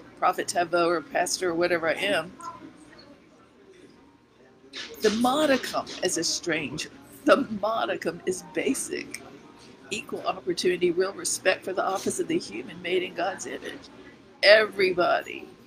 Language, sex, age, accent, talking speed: English, female, 50-69, American, 125 wpm